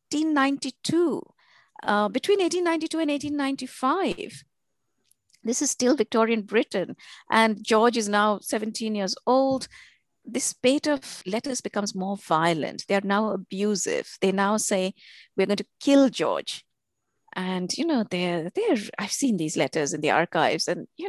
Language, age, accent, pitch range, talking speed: English, 50-69, Indian, 195-270 Hz, 145 wpm